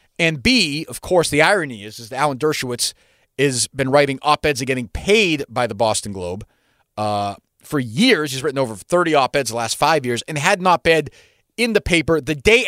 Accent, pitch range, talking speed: American, 135-200 Hz, 205 wpm